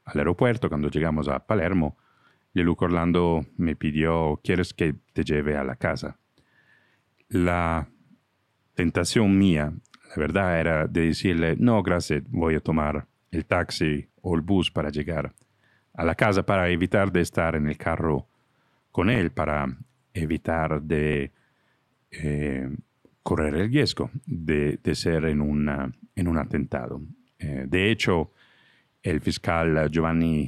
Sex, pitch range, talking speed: male, 75-95 Hz, 140 wpm